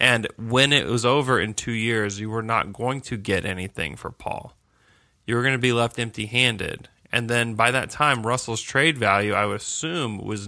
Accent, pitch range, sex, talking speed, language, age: American, 110-130 Hz, male, 205 wpm, English, 20-39